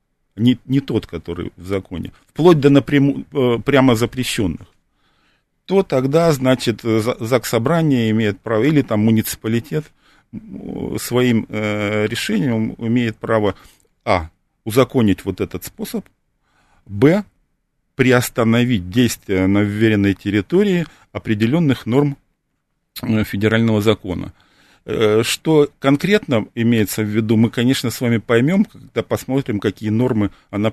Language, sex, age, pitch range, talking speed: Russian, male, 40-59, 105-130 Hz, 105 wpm